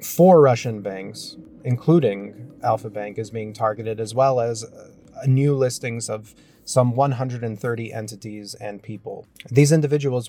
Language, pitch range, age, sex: English, 110-130 Hz, 30-49, male